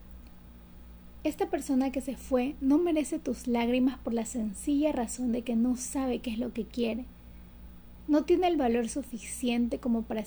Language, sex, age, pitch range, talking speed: Spanish, female, 30-49, 200-255 Hz, 170 wpm